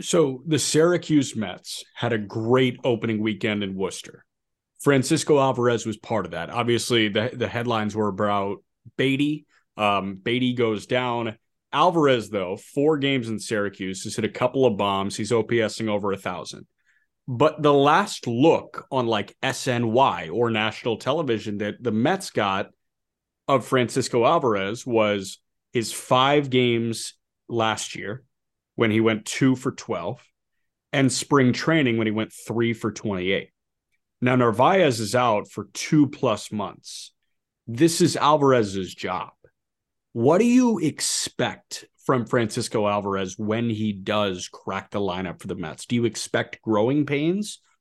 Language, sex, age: English, male, 30-49